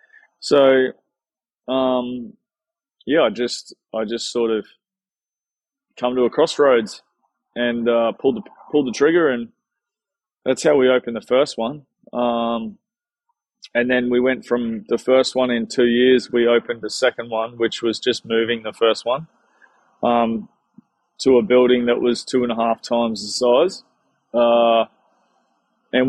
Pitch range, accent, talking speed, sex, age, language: 115-130 Hz, Australian, 155 wpm, male, 20-39, English